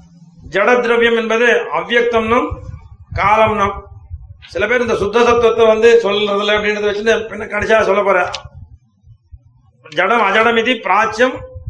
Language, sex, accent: Tamil, male, native